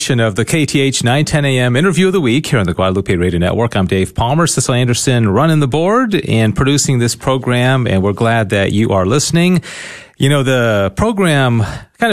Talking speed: 195 wpm